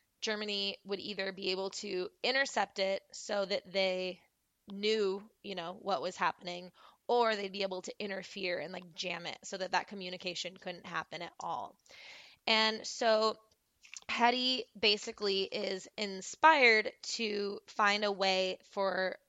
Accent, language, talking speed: American, English, 145 wpm